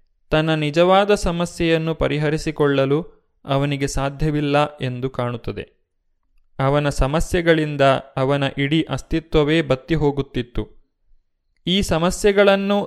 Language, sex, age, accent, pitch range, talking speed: Kannada, male, 30-49, native, 135-165 Hz, 75 wpm